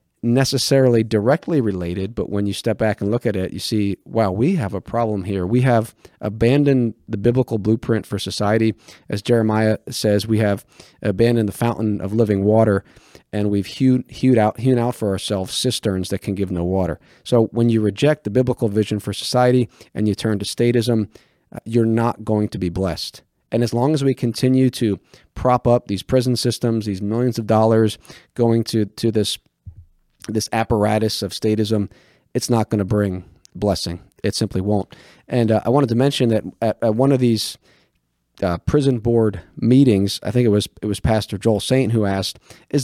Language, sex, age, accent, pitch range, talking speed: English, male, 40-59, American, 105-125 Hz, 190 wpm